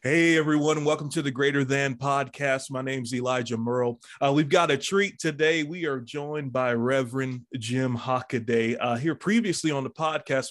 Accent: American